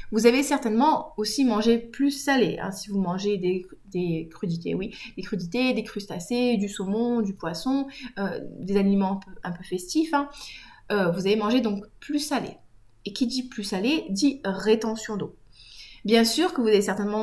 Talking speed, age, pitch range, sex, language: 185 wpm, 20-39, 190-245 Hz, female, French